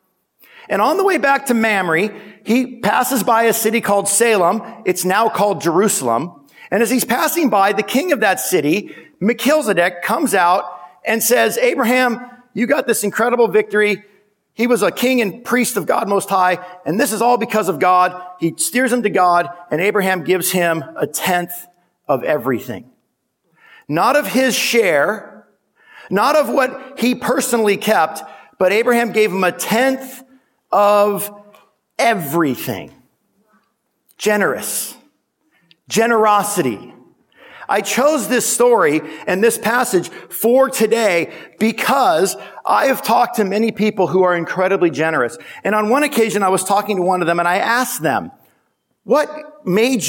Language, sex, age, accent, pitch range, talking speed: English, male, 50-69, American, 185-240 Hz, 150 wpm